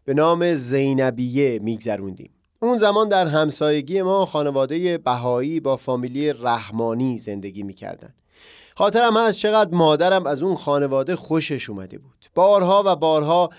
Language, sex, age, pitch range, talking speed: Persian, male, 30-49, 130-175 Hz, 135 wpm